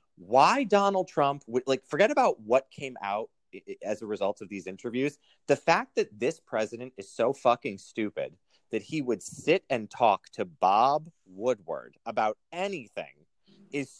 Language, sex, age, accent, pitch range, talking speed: English, male, 30-49, American, 105-165 Hz, 160 wpm